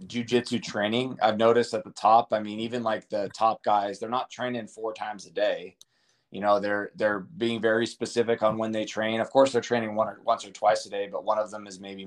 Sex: male